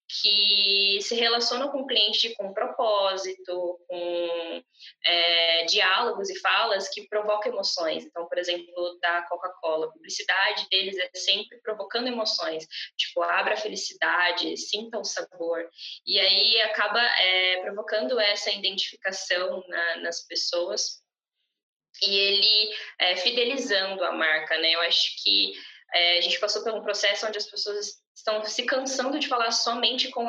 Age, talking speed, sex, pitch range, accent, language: 10-29, 145 wpm, female, 180-215 Hz, Brazilian, Portuguese